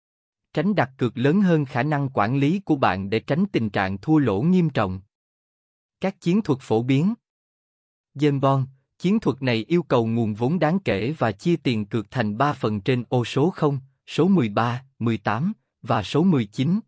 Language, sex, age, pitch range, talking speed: Vietnamese, male, 20-39, 110-155 Hz, 185 wpm